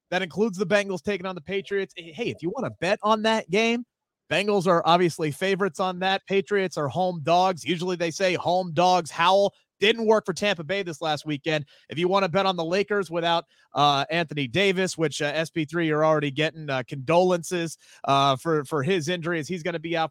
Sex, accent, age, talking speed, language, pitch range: male, American, 30-49, 210 wpm, English, 160-210 Hz